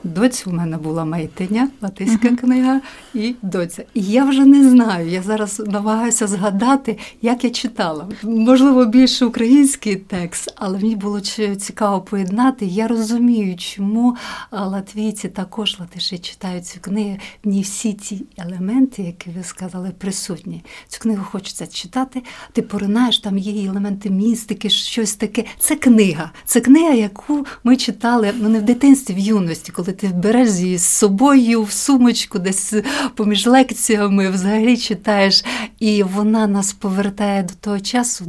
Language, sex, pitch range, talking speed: Ukrainian, female, 190-230 Hz, 145 wpm